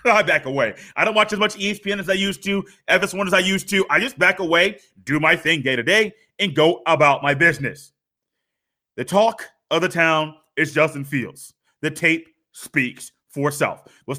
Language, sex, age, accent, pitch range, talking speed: English, male, 30-49, American, 165-220 Hz, 200 wpm